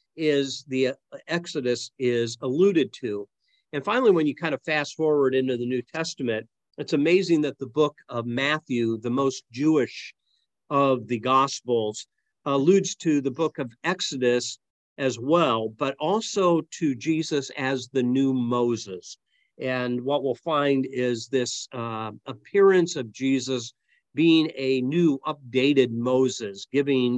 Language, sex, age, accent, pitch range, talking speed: English, male, 50-69, American, 120-155 Hz, 140 wpm